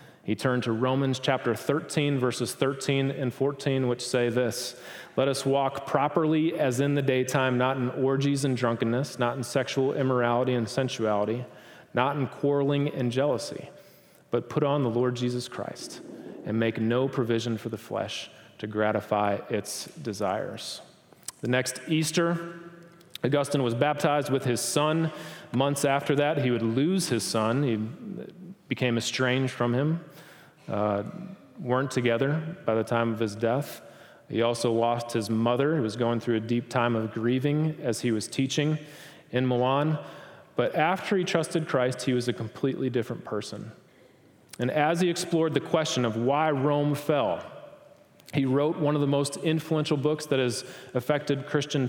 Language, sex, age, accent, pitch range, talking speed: English, male, 30-49, American, 120-145 Hz, 160 wpm